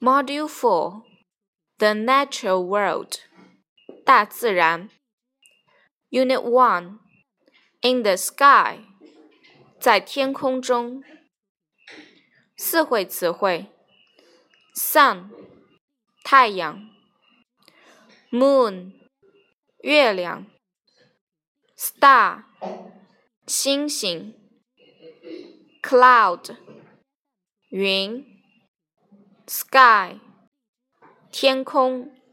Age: 10-29